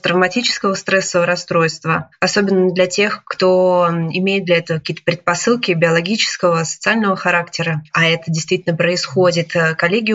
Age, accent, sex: 20-39, native, female